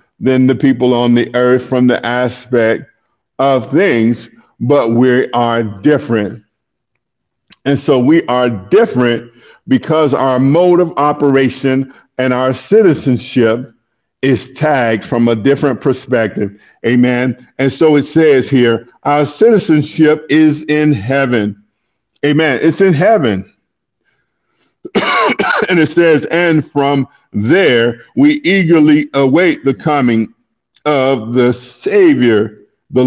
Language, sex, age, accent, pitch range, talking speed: English, male, 50-69, American, 120-155 Hz, 115 wpm